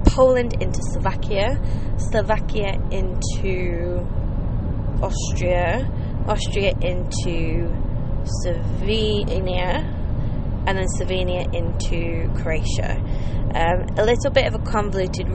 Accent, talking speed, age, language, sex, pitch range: British, 80 wpm, 20-39, English, female, 90-110 Hz